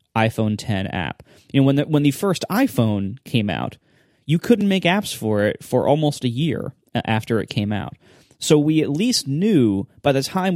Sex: male